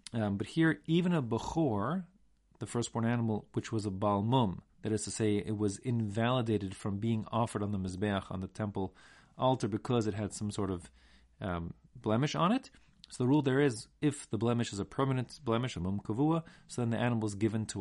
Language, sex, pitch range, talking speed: English, male, 105-140 Hz, 210 wpm